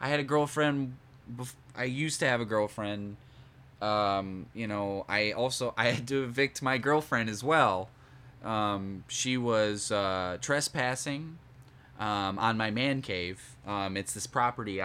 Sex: male